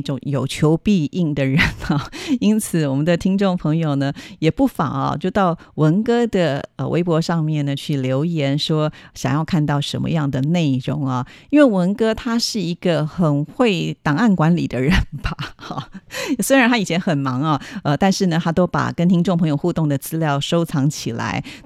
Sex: female